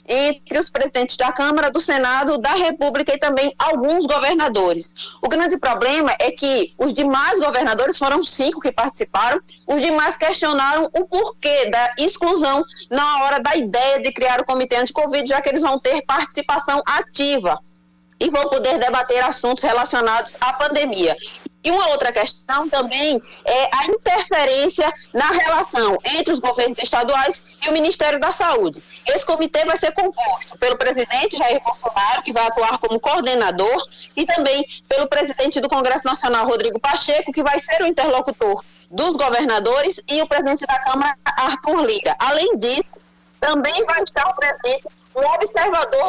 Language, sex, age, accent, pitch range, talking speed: Portuguese, female, 20-39, Brazilian, 255-310 Hz, 160 wpm